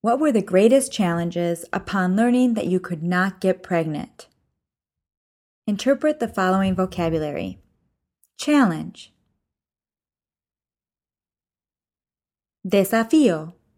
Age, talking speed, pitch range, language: 20-39, 85 wpm, 175-245 Hz, English